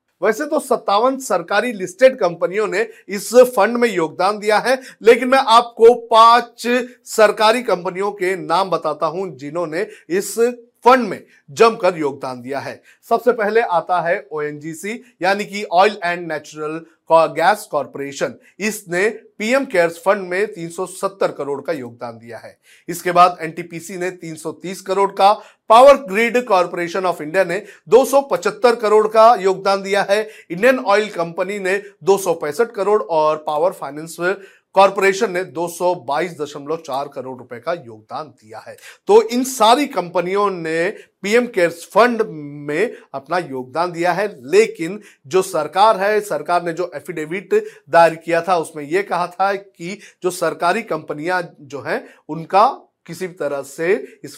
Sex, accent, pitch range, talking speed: male, native, 165-220 Hz, 140 wpm